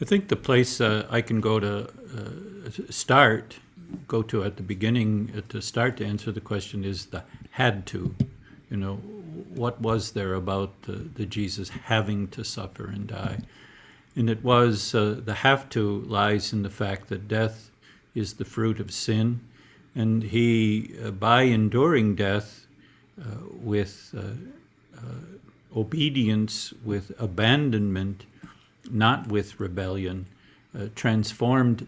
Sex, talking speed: male, 145 wpm